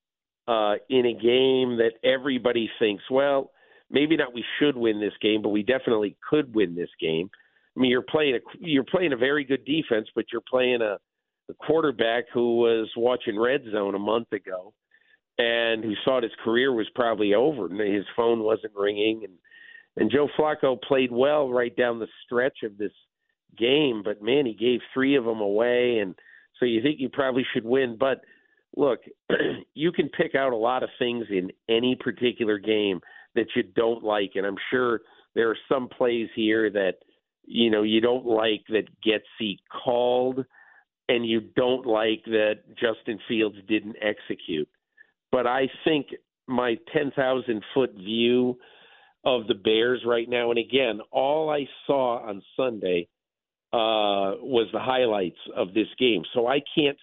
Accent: American